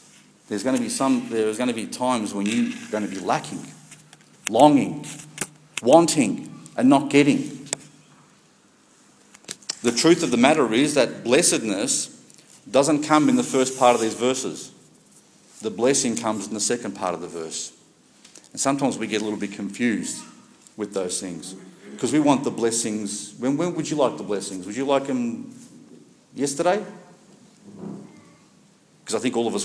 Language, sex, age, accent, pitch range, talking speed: English, male, 50-69, Australian, 105-170 Hz, 165 wpm